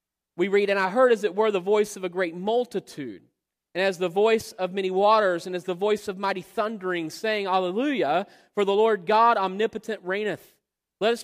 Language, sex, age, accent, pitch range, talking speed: English, male, 40-59, American, 185-230 Hz, 205 wpm